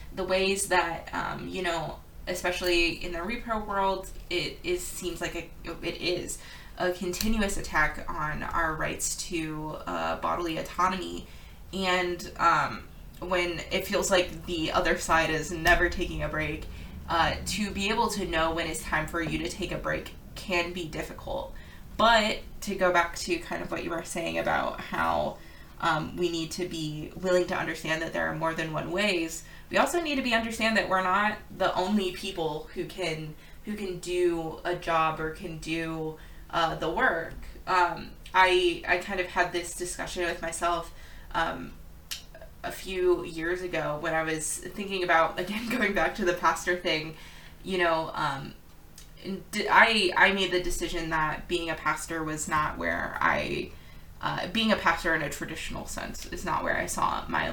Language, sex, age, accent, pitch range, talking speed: English, female, 20-39, American, 160-185 Hz, 175 wpm